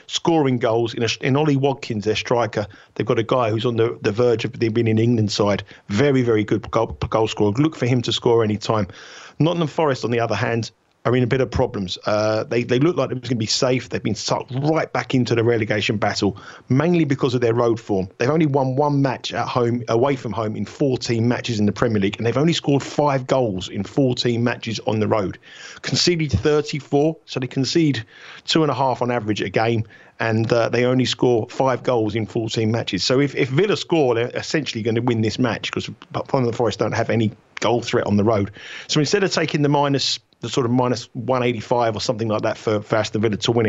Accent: British